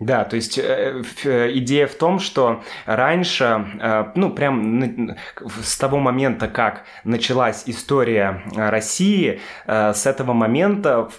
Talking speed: 140 wpm